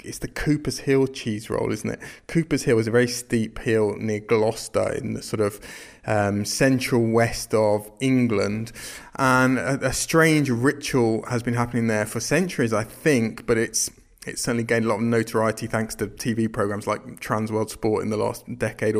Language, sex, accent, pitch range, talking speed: English, male, British, 110-130 Hz, 190 wpm